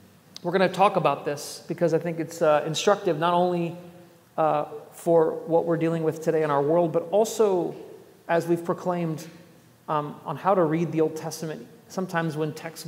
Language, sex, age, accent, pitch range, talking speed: English, male, 40-59, American, 155-200 Hz, 185 wpm